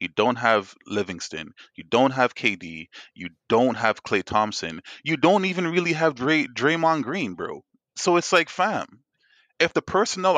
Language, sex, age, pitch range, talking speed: English, male, 20-39, 115-180 Hz, 170 wpm